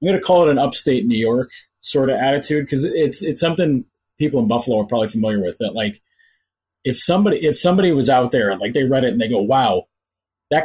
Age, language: 30-49, English